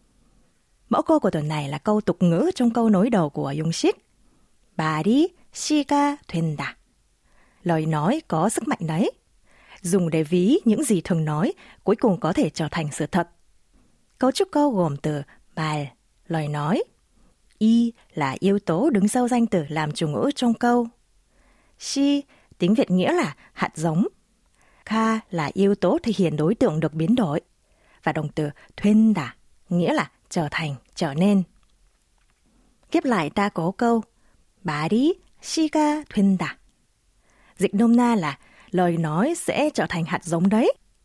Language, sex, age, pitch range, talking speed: Vietnamese, female, 20-39, 160-240 Hz, 165 wpm